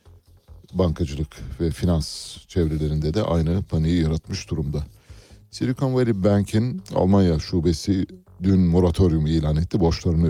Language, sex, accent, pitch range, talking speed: Turkish, male, native, 80-95 Hz, 110 wpm